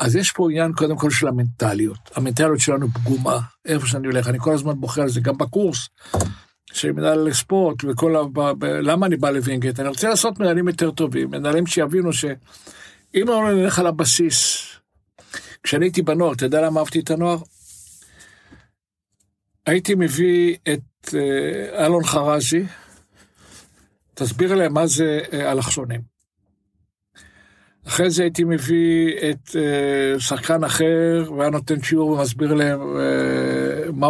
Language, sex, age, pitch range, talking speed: Hebrew, male, 60-79, 120-160 Hz, 140 wpm